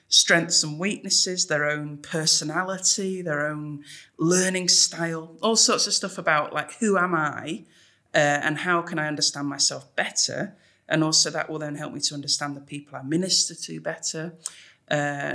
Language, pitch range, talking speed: English, 145-175 Hz, 170 wpm